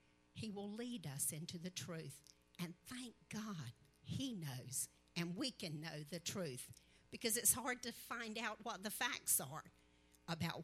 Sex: female